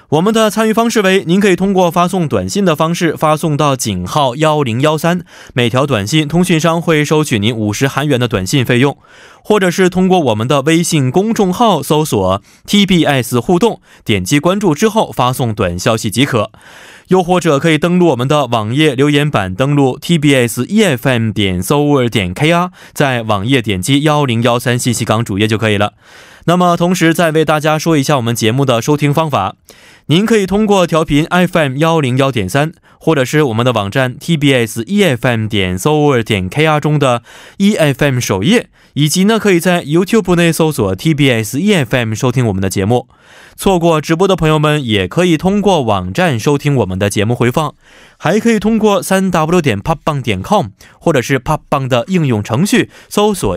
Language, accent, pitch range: Korean, Chinese, 120-175 Hz